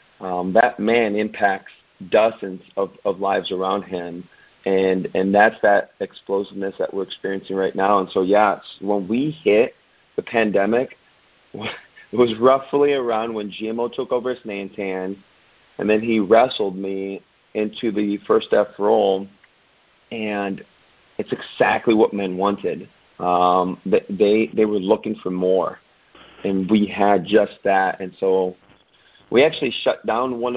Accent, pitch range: American, 95-110 Hz